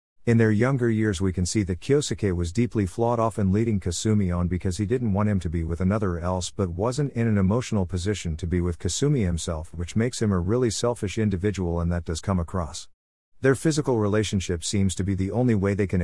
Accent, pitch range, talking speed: American, 90-115 Hz, 230 wpm